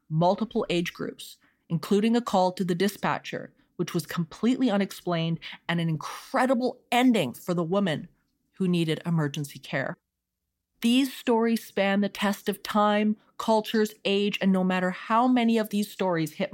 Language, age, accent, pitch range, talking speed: English, 30-49, American, 160-200 Hz, 150 wpm